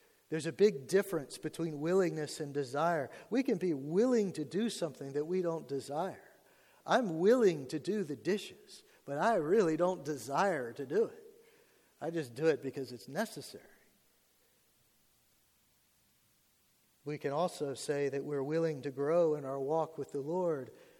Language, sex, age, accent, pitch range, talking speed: English, male, 50-69, American, 155-200 Hz, 155 wpm